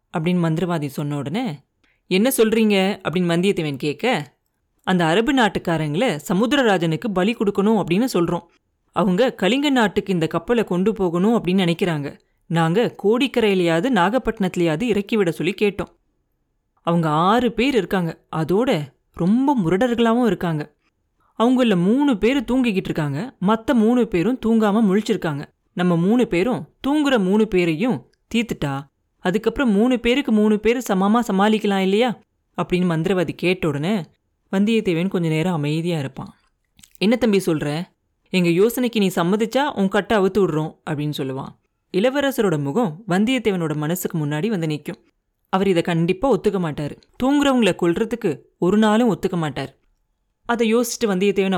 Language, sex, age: Tamil, female, 30-49